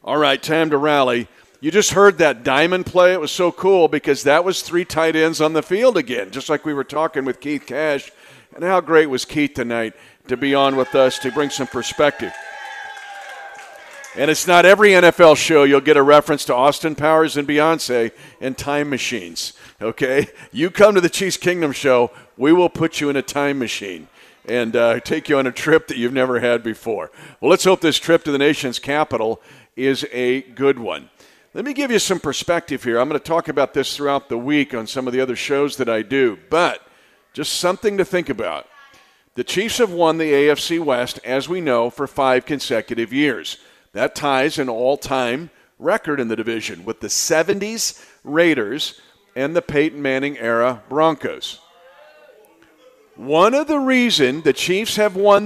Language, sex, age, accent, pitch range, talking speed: English, male, 50-69, American, 130-180 Hz, 190 wpm